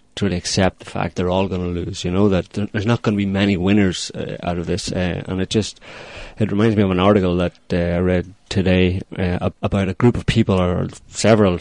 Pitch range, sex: 90-100 Hz, male